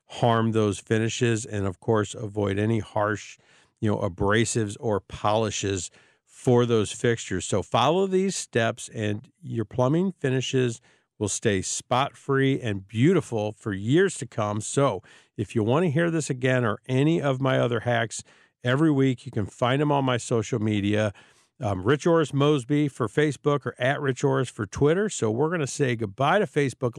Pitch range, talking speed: 110-140 Hz, 175 wpm